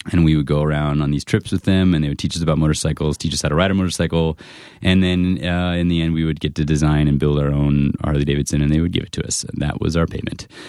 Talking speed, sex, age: 290 wpm, male, 30-49